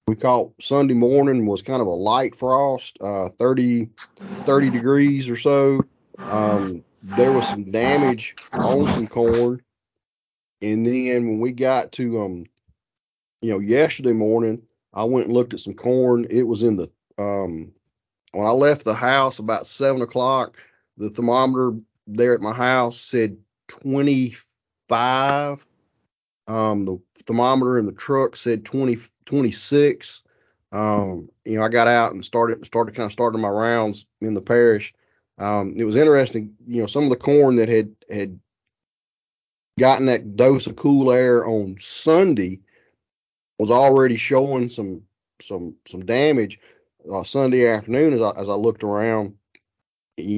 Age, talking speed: 30-49, 150 wpm